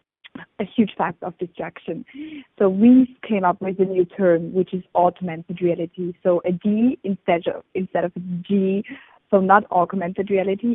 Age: 20-39